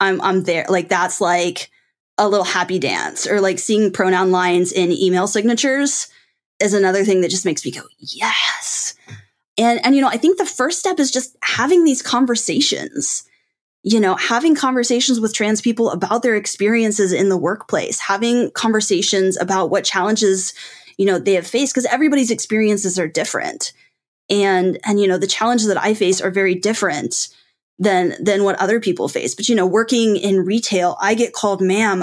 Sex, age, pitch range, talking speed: female, 10-29, 185-230 Hz, 180 wpm